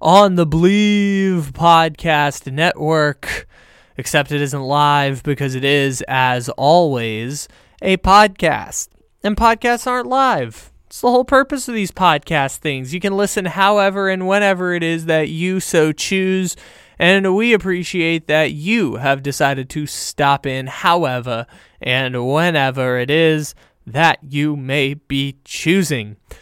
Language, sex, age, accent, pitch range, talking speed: English, male, 20-39, American, 140-190 Hz, 135 wpm